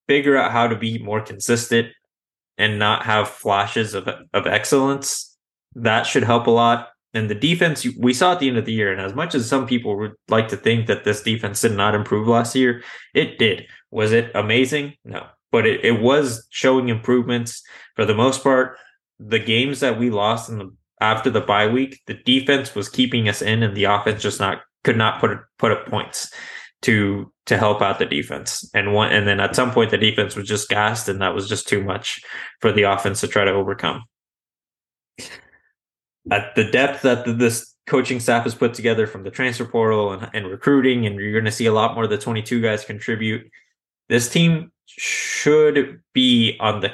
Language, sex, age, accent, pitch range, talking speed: English, male, 20-39, American, 105-125 Hz, 200 wpm